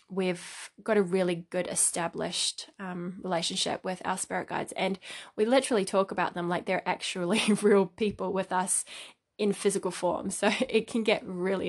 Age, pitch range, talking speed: 20-39, 185-215 Hz, 170 wpm